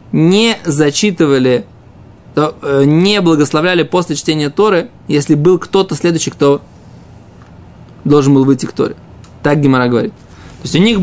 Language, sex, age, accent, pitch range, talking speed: Russian, male, 20-39, native, 140-180 Hz, 130 wpm